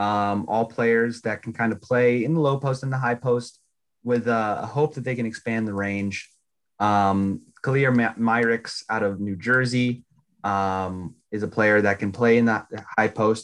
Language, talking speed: English, 190 wpm